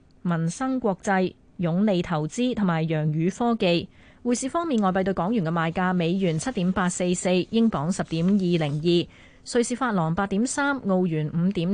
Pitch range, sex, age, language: 170-215 Hz, female, 20-39, Chinese